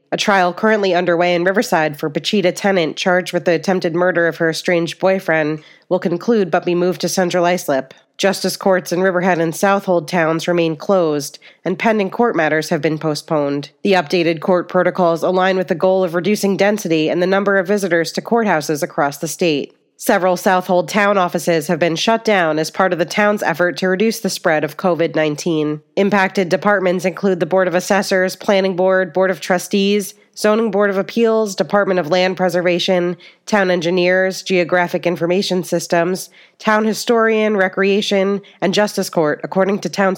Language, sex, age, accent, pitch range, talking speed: English, female, 30-49, American, 170-200 Hz, 175 wpm